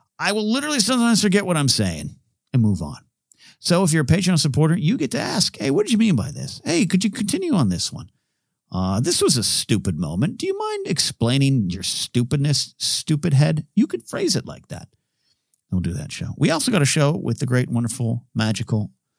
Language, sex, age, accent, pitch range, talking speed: English, male, 50-69, American, 105-155 Hz, 215 wpm